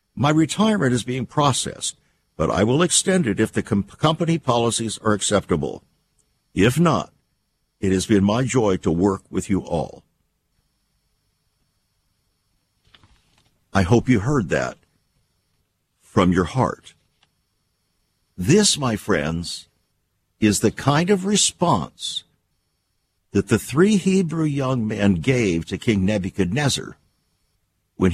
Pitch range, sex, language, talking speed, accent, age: 100-145 Hz, male, English, 115 wpm, American, 60-79